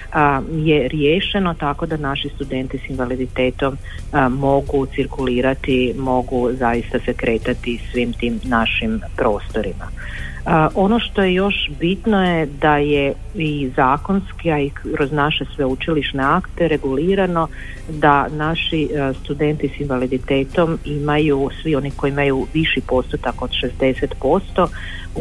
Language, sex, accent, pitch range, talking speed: Croatian, female, native, 125-160 Hz, 120 wpm